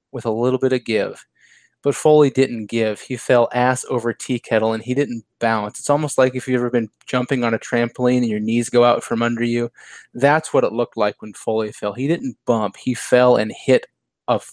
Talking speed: 225 wpm